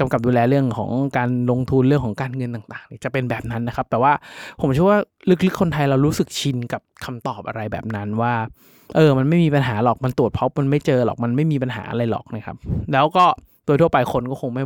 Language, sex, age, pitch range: Thai, male, 20-39, 115-150 Hz